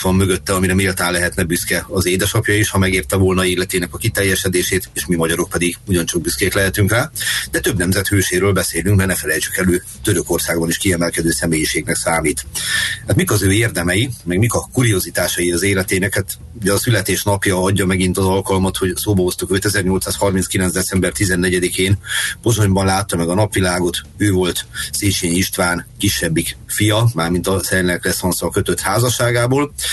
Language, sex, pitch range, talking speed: Hungarian, male, 90-105 Hz, 155 wpm